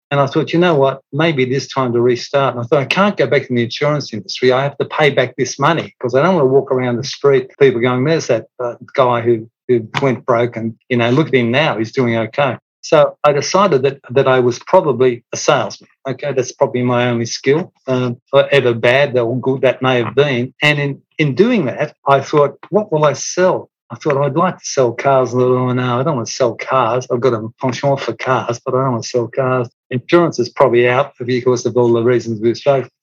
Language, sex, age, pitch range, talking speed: English, male, 50-69, 120-140 Hz, 245 wpm